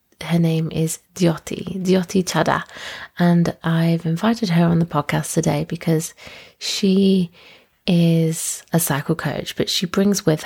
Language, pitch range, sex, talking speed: English, 155-175 Hz, female, 140 wpm